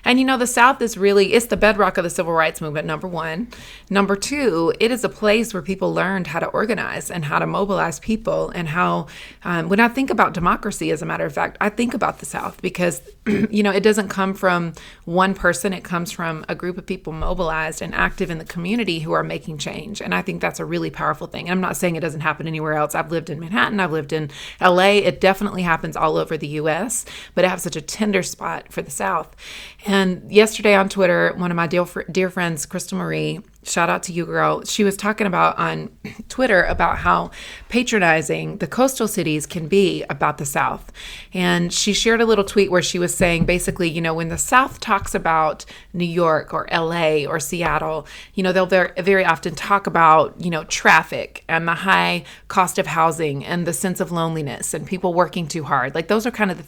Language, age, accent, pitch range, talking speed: English, 30-49, American, 165-200 Hz, 220 wpm